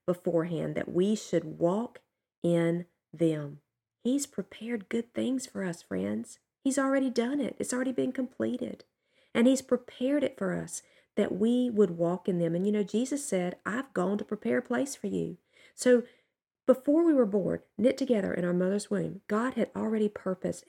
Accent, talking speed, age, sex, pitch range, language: American, 180 wpm, 40-59, female, 180-245 Hz, English